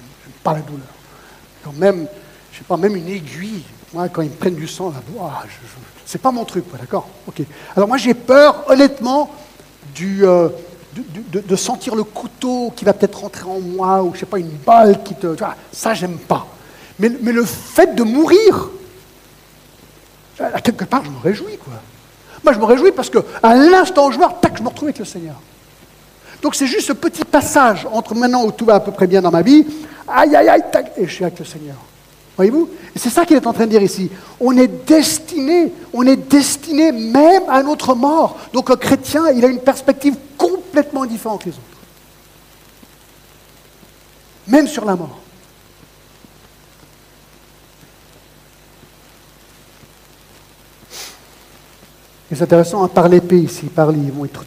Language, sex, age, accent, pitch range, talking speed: French, male, 60-79, French, 175-280 Hz, 175 wpm